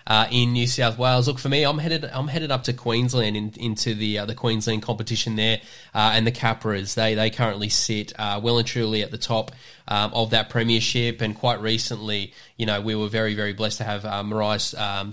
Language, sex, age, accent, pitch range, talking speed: English, male, 10-29, Australian, 110-120 Hz, 225 wpm